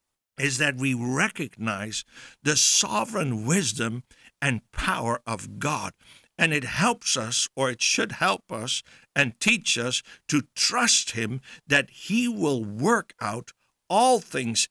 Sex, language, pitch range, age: male, English, 125-170 Hz, 60-79